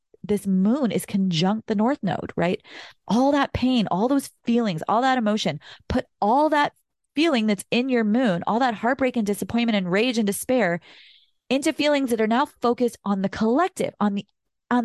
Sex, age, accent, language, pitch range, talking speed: female, 30-49, American, English, 175-250 Hz, 185 wpm